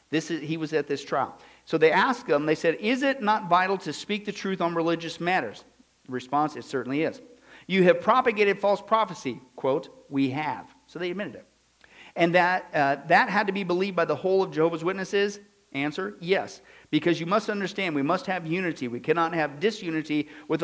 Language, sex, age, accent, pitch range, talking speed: English, male, 50-69, American, 145-190 Hz, 195 wpm